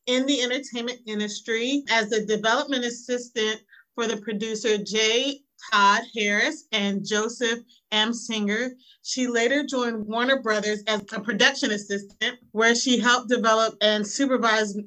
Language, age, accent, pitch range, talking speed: English, 30-49, American, 210-245 Hz, 135 wpm